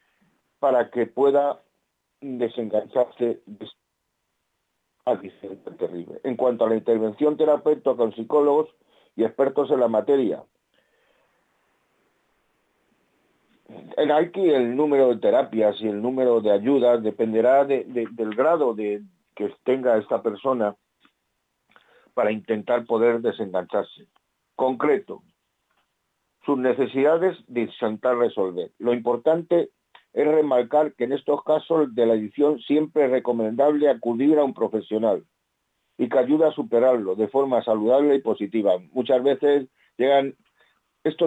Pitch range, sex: 110-145 Hz, male